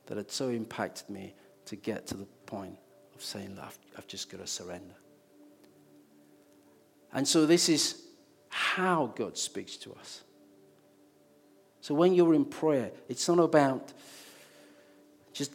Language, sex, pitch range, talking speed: English, male, 95-140 Hz, 140 wpm